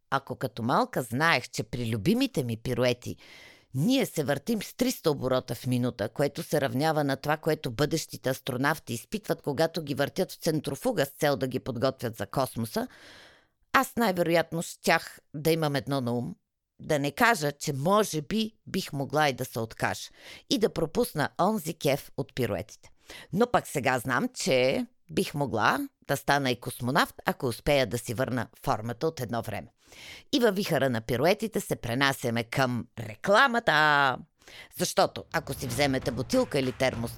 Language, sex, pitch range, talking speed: Bulgarian, female, 120-165 Hz, 165 wpm